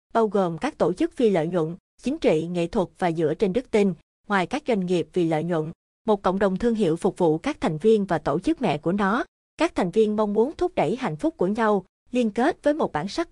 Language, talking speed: Vietnamese, 255 wpm